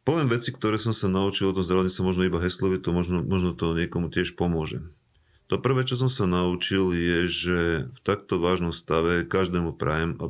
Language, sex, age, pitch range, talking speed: Slovak, male, 40-59, 85-95 Hz, 205 wpm